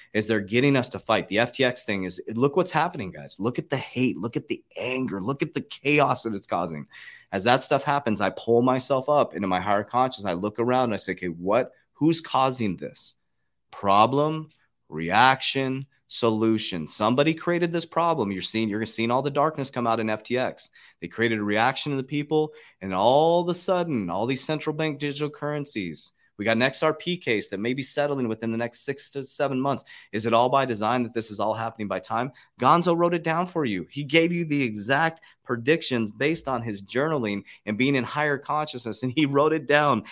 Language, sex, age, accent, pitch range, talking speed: English, male, 30-49, American, 110-145 Hz, 210 wpm